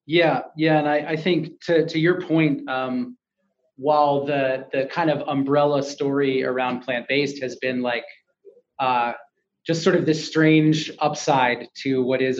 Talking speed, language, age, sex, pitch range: 165 wpm, English, 30-49, male, 130-150 Hz